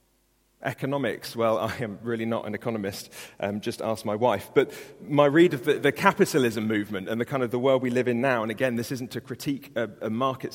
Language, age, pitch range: English, 30-49, 110-130 Hz